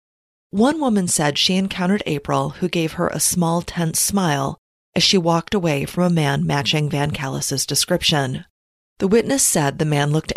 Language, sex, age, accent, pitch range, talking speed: English, female, 30-49, American, 145-190 Hz, 175 wpm